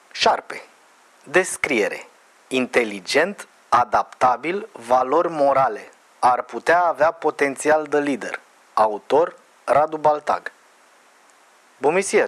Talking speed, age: 80 wpm, 30-49